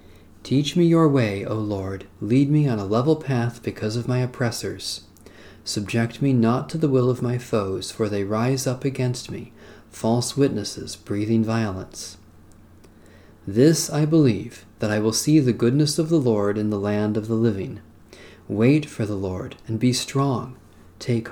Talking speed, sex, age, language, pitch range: 170 wpm, male, 40-59, English, 100-130 Hz